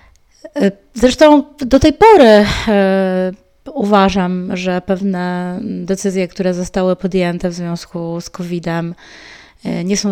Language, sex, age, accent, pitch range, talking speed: Polish, female, 20-39, native, 180-210 Hz, 100 wpm